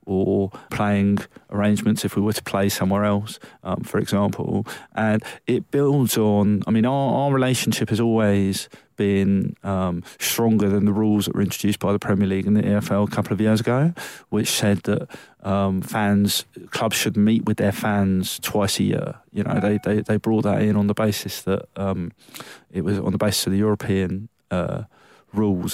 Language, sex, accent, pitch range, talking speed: English, male, British, 100-110 Hz, 190 wpm